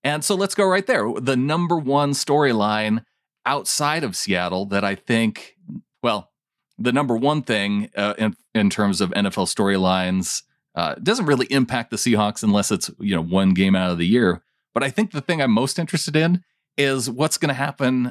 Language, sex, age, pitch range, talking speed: English, male, 30-49, 105-145 Hz, 190 wpm